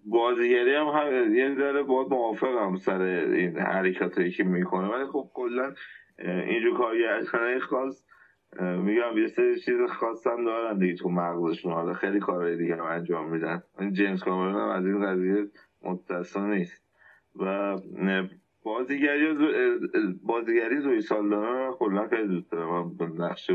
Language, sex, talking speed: Persian, male, 135 wpm